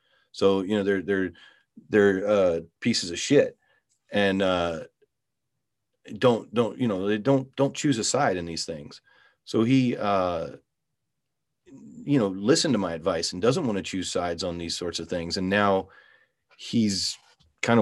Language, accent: English, American